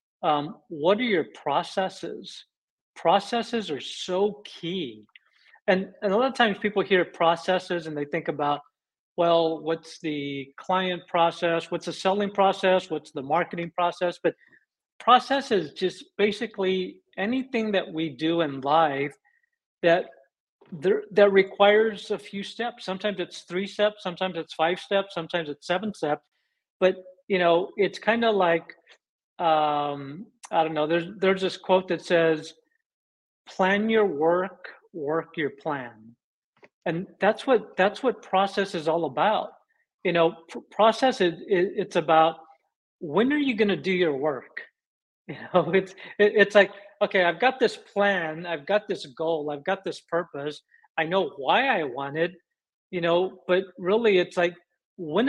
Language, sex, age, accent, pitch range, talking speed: English, male, 50-69, American, 165-200 Hz, 155 wpm